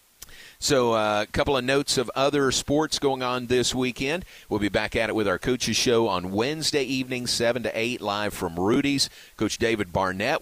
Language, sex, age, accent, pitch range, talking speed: English, male, 40-59, American, 95-130 Hz, 190 wpm